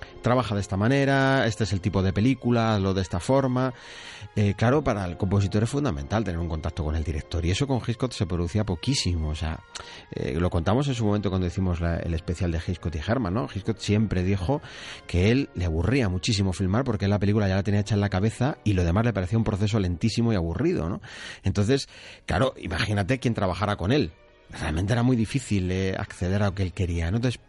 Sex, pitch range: male, 90-120 Hz